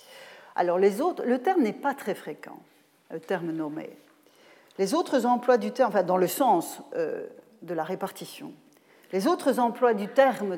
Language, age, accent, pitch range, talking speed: French, 40-59, French, 185-265 Hz, 170 wpm